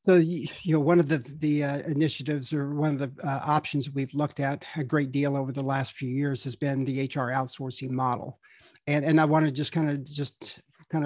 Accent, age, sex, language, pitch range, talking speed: American, 50-69, male, English, 140-155 Hz, 230 wpm